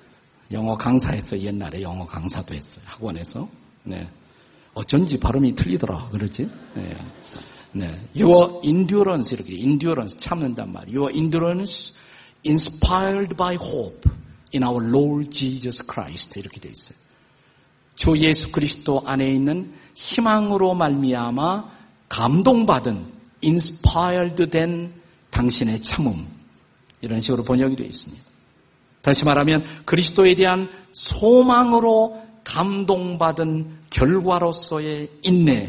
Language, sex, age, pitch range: Korean, male, 50-69, 130-180 Hz